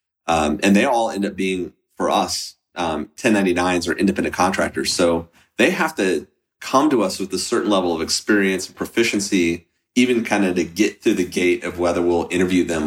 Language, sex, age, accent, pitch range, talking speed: English, male, 30-49, American, 85-100 Hz, 195 wpm